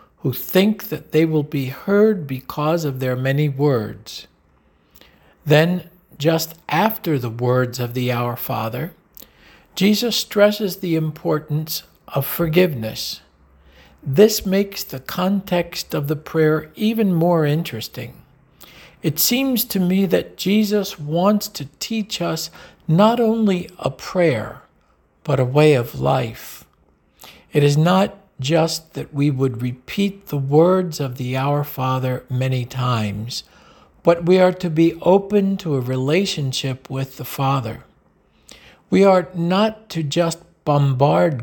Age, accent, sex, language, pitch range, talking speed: 60-79, American, male, English, 130-185 Hz, 130 wpm